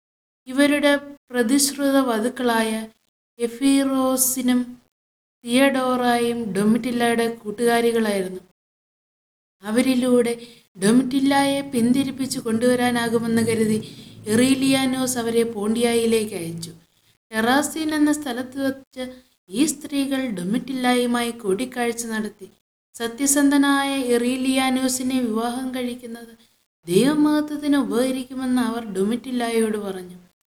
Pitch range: 220-265 Hz